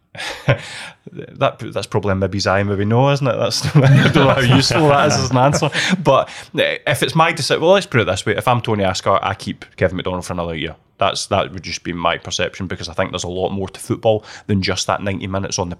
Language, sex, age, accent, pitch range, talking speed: English, male, 20-39, British, 95-110 Hz, 245 wpm